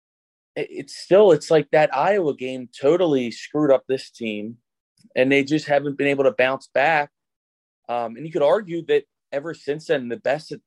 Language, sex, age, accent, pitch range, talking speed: English, male, 20-39, American, 115-145 Hz, 185 wpm